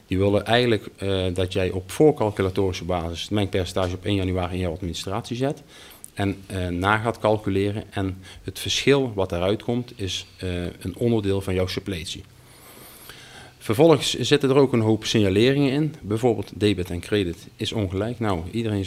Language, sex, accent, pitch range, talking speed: Dutch, male, Dutch, 95-115 Hz, 165 wpm